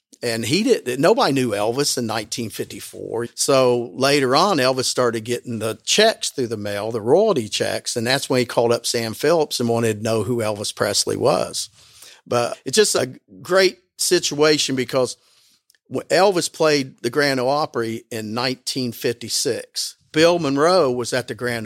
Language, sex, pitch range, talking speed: English, male, 120-170 Hz, 165 wpm